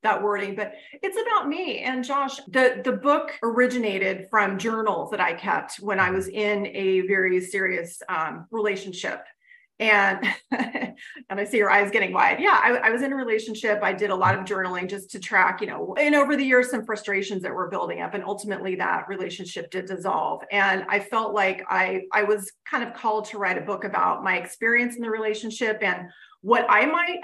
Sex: female